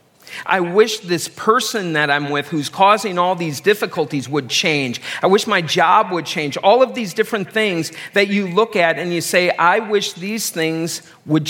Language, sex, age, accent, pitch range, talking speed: English, male, 50-69, American, 155-200 Hz, 195 wpm